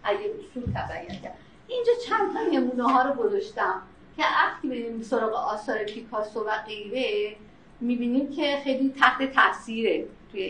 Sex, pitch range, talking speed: female, 225-315 Hz, 120 wpm